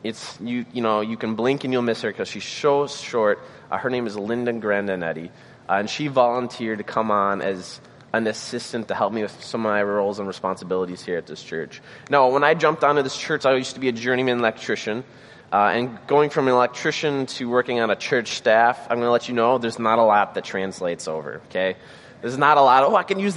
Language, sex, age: English, male, 20-39